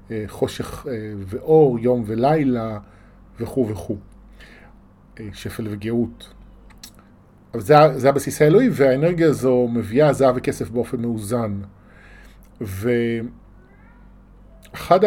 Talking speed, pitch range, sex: 85 wpm, 115-145 Hz, male